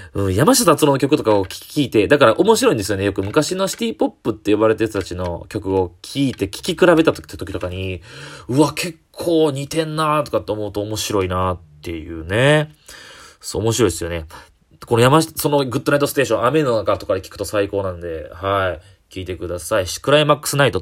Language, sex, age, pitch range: Japanese, male, 20-39, 95-155 Hz